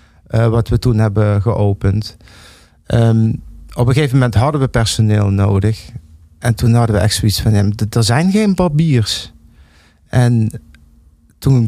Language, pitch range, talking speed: Dutch, 105-130 Hz, 150 wpm